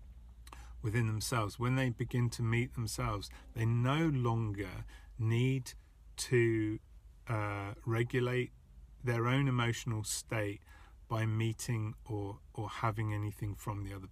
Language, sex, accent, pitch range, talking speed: English, male, British, 95-120 Hz, 120 wpm